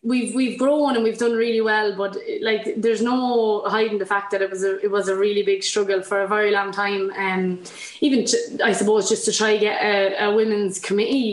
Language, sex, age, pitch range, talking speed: English, female, 20-39, 195-215 Hz, 240 wpm